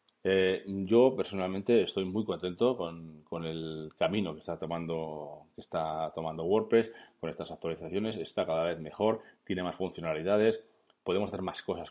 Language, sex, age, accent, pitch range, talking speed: Spanish, male, 30-49, Spanish, 85-100 Hz, 155 wpm